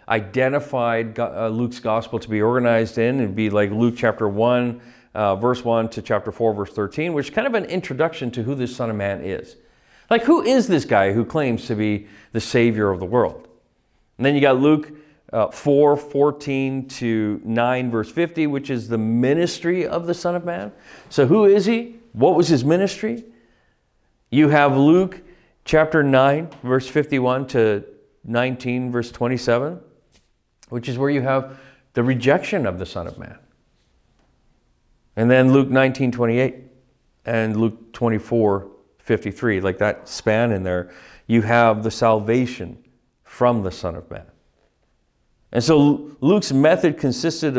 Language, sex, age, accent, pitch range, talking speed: English, male, 40-59, American, 115-155 Hz, 165 wpm